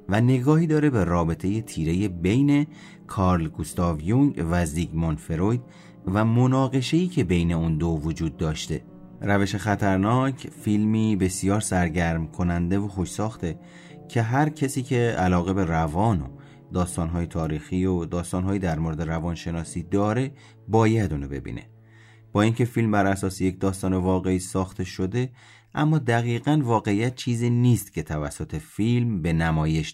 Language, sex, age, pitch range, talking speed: Persian, male, 30-49, 85-120 Hz, 140 wpm